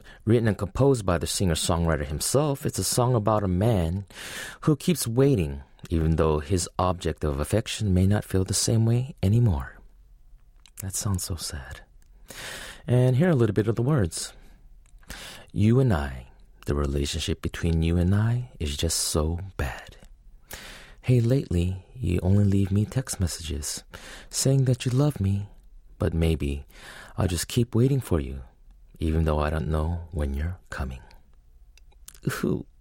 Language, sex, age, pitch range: English, male, 30-49, 80-115 Hz